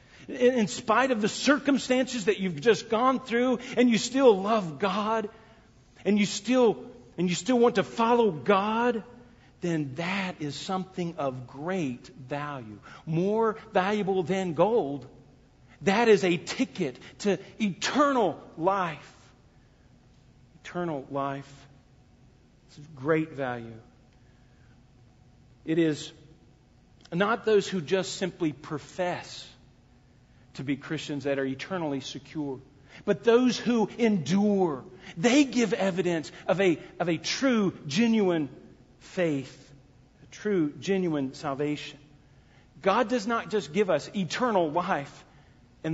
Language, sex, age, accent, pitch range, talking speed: English, male, 50-69, American, 135-210 Hz, 120 wpm